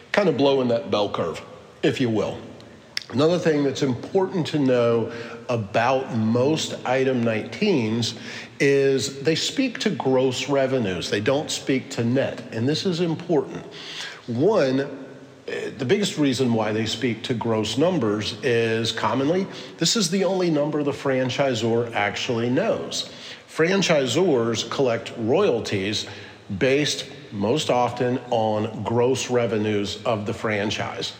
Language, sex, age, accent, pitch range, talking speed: English, male, 40-59, American, 110-135 Hz, 130 wpm